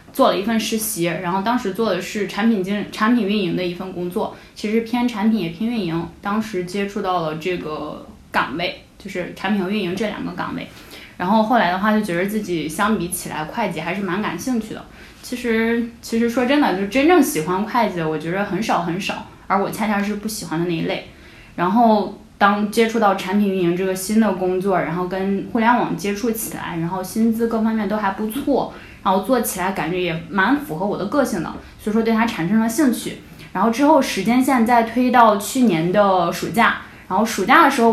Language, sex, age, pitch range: Chinese, female, 10-29, 185-230 Hz